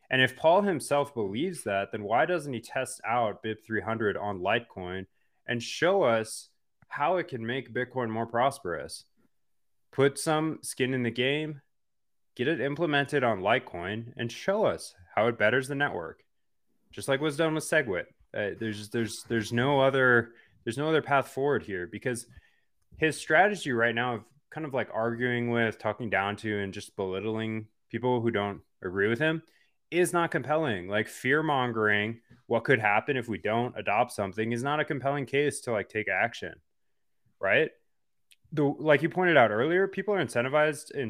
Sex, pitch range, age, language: male, 110-140 Hz, 20-39, English